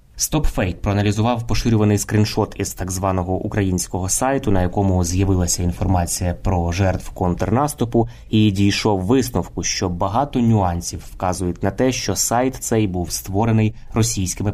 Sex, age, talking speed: male, 20-39, 130 wpm